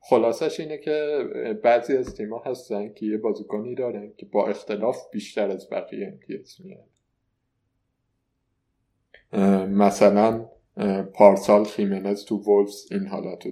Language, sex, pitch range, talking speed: Persian, male, 100-120 Hz, 115 wpm